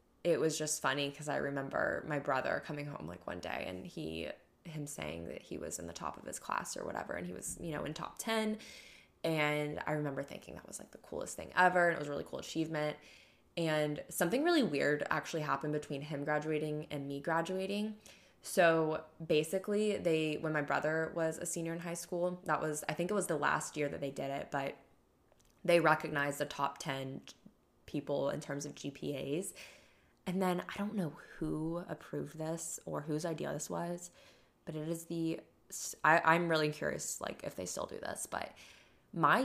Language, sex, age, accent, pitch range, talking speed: English, female, 10-29, American, 145-175 Hz, 200 wpm